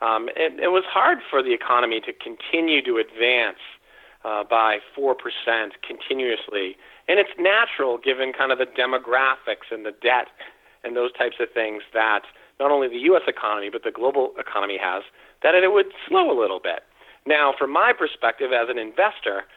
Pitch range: 125-180 Hz